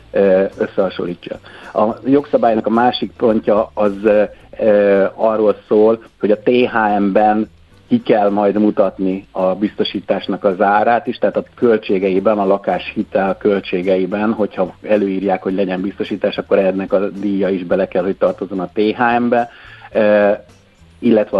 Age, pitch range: 50-69, 95-110 Hz